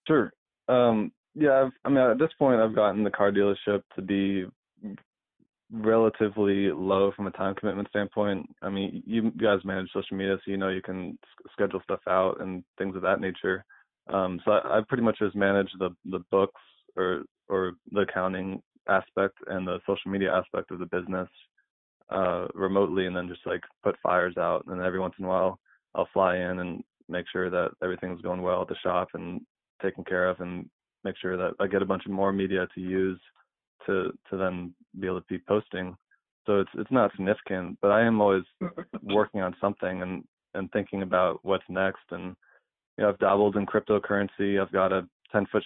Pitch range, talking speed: 95-100 Hz, 200 wpm